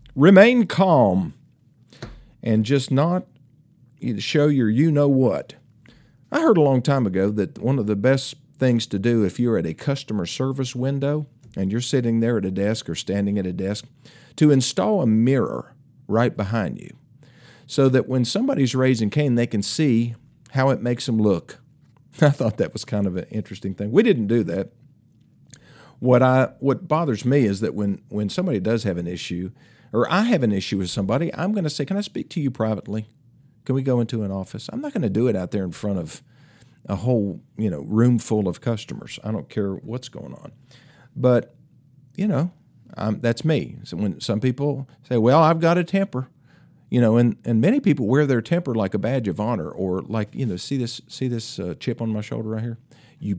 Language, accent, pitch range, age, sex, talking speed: English, American, 105-140 Hz, 50-69, male, 205 wpm